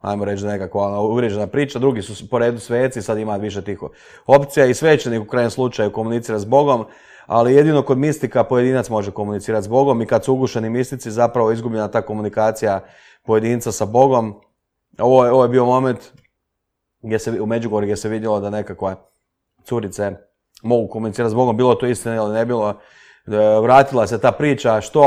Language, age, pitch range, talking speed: Croatian, 30-49, 105-120 Hz, 180 wpm